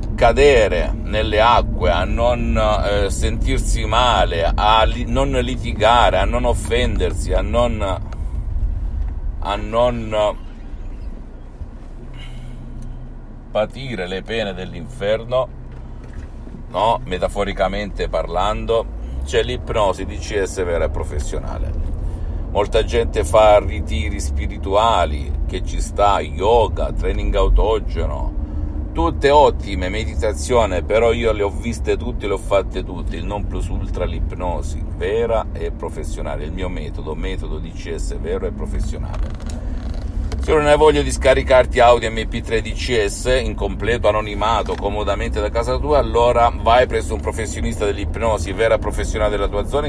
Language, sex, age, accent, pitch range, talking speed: Italian, male, 50-69, native, 80-110 Hz, 120 wpm